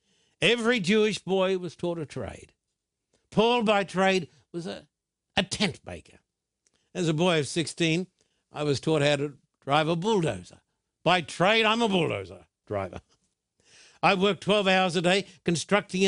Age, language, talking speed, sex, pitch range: 60-79, English, 155 wpm, male, 165-205 Hz